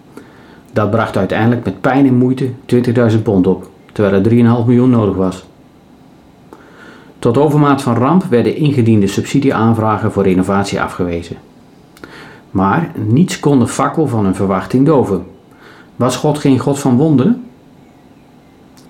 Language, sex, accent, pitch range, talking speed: Dutch, male, Dutch, 100-135 Hz, 130 wpm